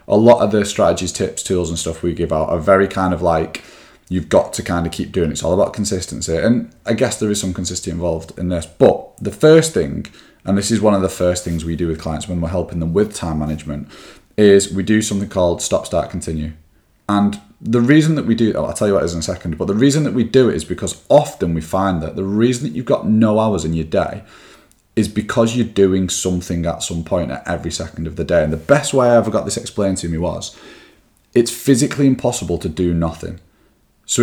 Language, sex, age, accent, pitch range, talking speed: English, male, 30-49, British, 85-115 Hz, 250 wpm